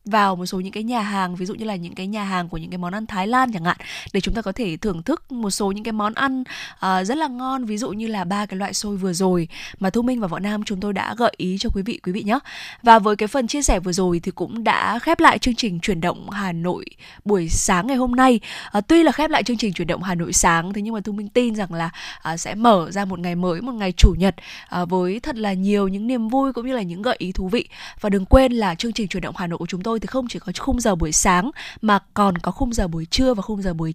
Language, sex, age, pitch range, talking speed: Vietnamese, female, 20-39, 190-240 Hz, 295 wpm